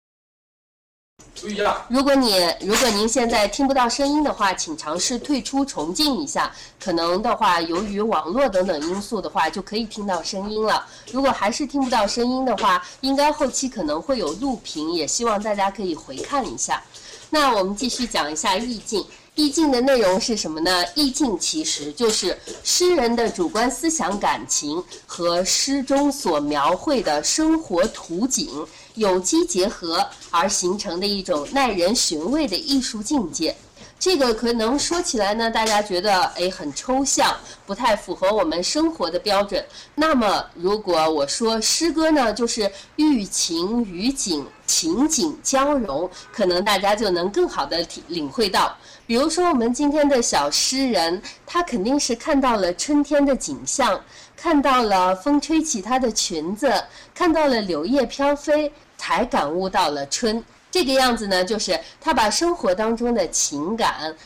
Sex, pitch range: female, 190-285 Hz